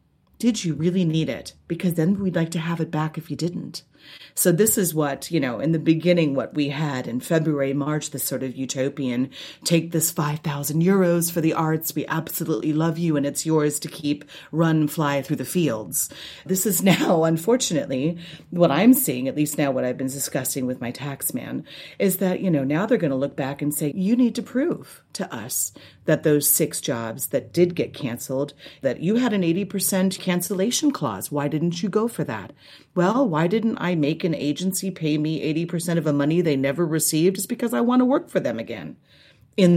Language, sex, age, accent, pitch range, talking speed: English, female, 30-49, American, 145-190 Hz, 210 wpm